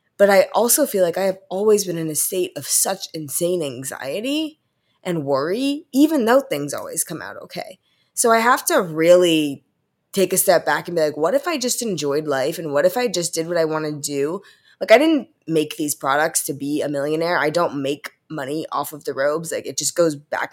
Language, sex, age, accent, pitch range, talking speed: English, female, 20-39, American, 155-245 Hz, 225 wpm